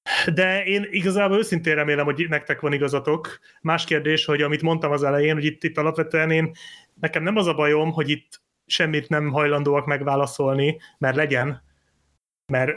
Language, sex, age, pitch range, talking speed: Hungarian, male, 30-49, 135-165 Hz, 165 wpm